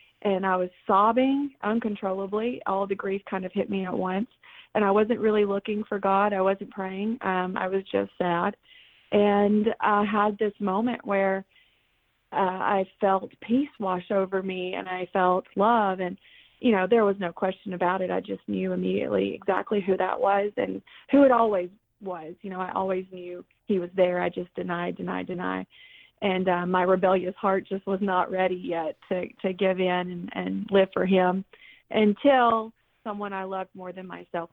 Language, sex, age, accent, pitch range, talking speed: English, female, 30-49, American, 180-205 Hz, 185 wpm